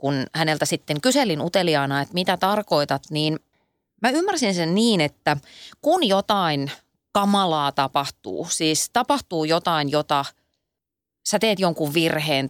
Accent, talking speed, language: native, 125 wpm, Finnish